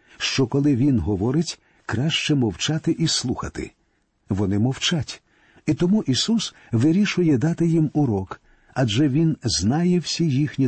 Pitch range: 110-150 Hz